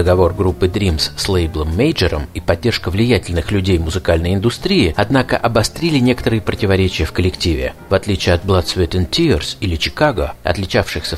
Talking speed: 150 wpm